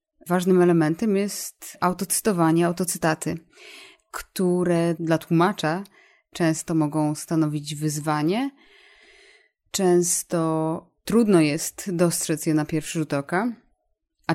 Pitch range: 160-190 Hz